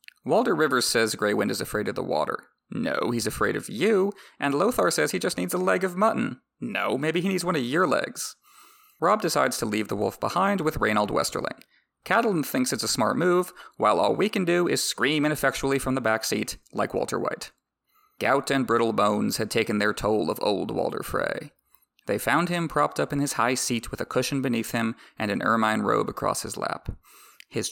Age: 30-49